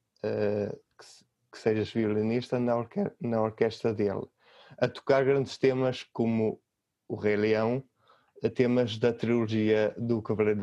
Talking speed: 125 wpm